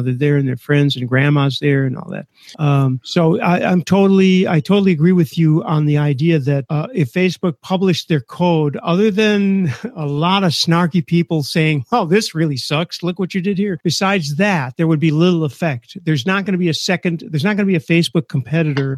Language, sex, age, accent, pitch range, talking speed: English, male, 50-69, American, 145-175 Hz, 220 wpm